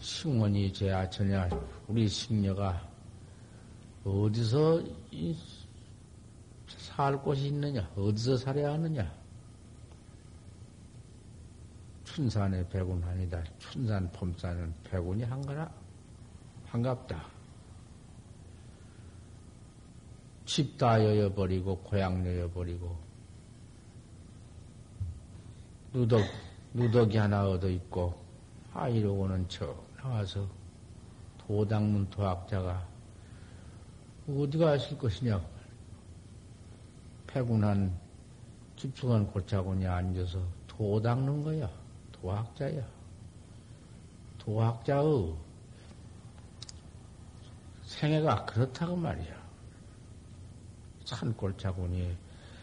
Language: Korean